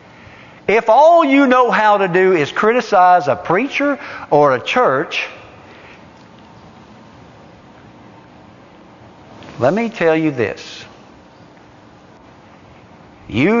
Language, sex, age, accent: English, male, 60-79, American